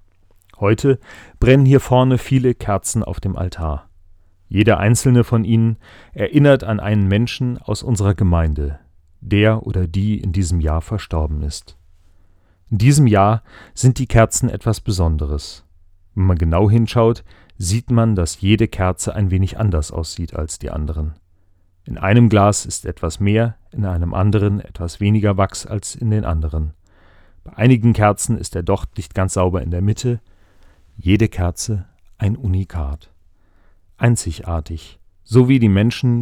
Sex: male